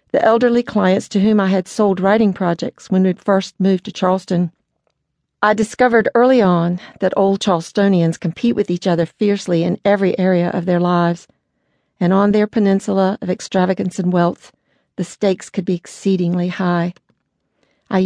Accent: American